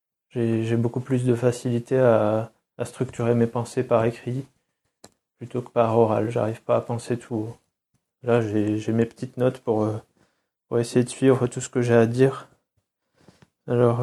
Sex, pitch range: male, 115-125 Hz